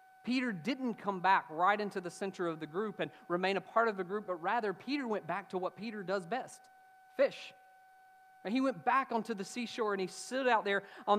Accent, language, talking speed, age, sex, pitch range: American, English, 225 wpm, 40-59, male, 160-225 Hz